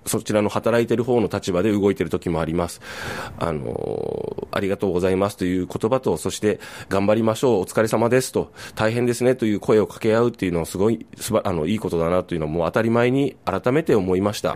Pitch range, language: 95-120 Hz, Japanese